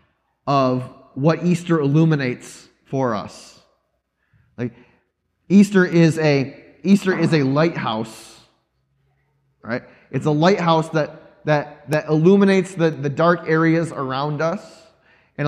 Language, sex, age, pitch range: English, male, 30-49, 135-160 Hz